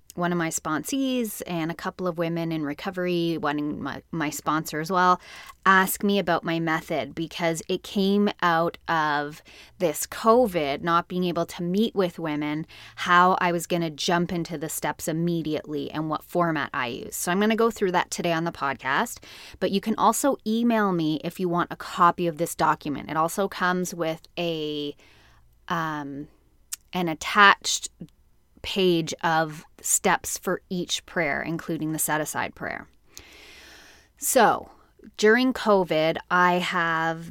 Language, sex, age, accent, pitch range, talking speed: English, female, 20-39, American, 155-180 Hz, 160 wpm